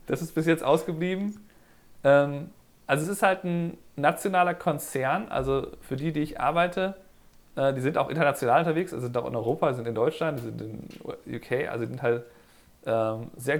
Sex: male